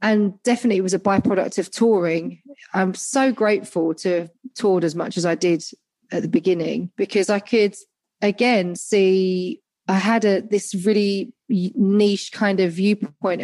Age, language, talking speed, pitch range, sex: 30-49, English, 160 wpm, 175-205 Hz, female